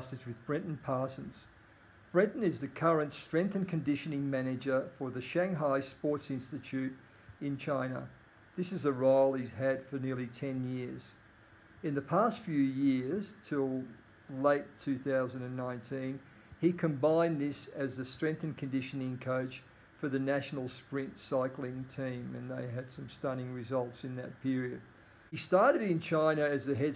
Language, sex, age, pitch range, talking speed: English, male, 50-69, 130-150 Hz, 150 wpm